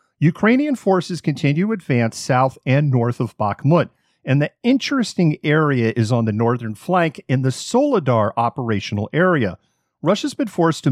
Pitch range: 115-165 Hz